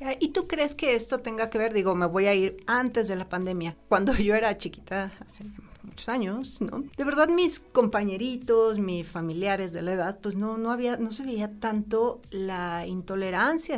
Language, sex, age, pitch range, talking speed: Spanish, female, 40-59, 185-245 Hz, 190 wpm